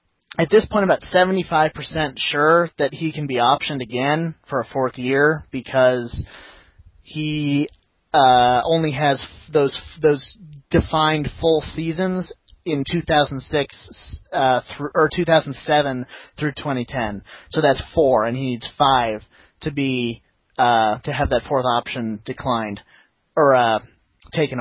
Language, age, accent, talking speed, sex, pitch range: English, 30-49, American, 135 wpm, male, 130-165 Hz